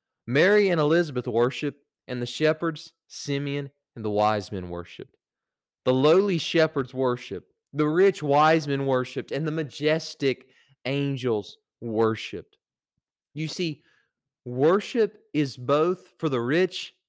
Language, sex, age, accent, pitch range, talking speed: English, male, 30-49, American, 130-160 Hz, 125 wpm